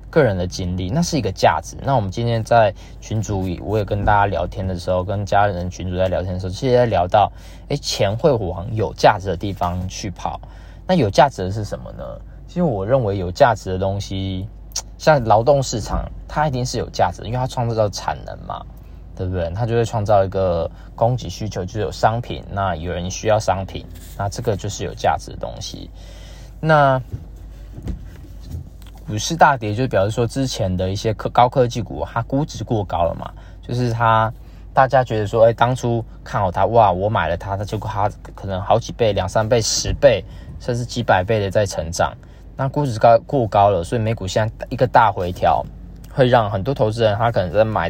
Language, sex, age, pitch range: Chinese, male, 20-39, 95-120 Hz